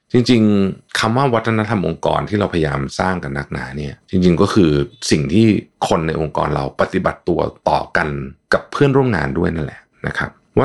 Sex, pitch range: male, 75-100 Hz